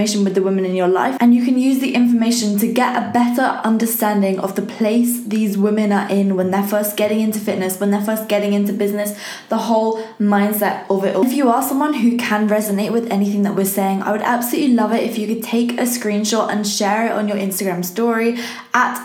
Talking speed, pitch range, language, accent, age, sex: 230 wpm, 205-235 Hz, English, British, 10-29, female